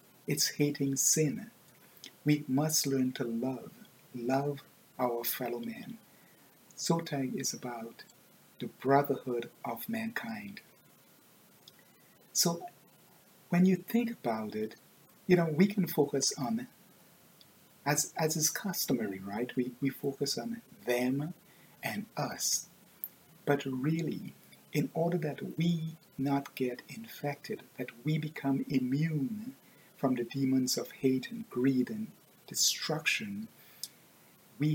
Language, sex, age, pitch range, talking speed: English, male, 60-79, 130-185 Hz, 115 wpm